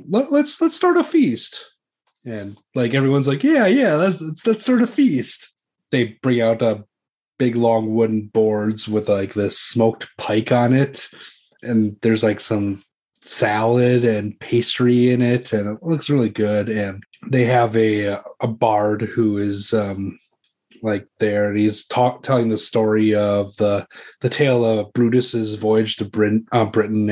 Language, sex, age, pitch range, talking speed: English, male, 30-49, 105-130 Hz, 160 wpm